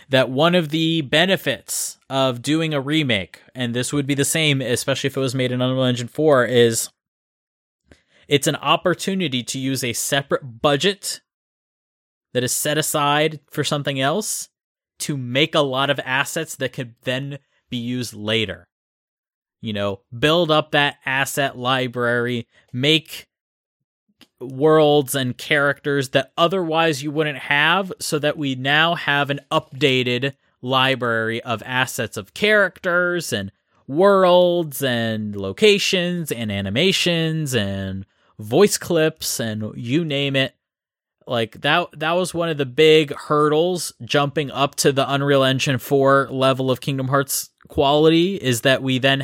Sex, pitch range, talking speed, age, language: male, 125-155 Hz, 145 wpm, 20-39, English